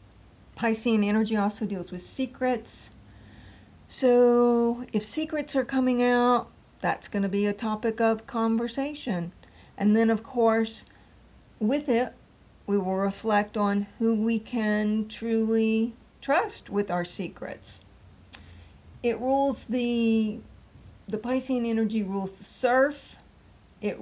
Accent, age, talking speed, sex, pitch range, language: American, 50-69, 120 wpm, female, 190-225 Hz, English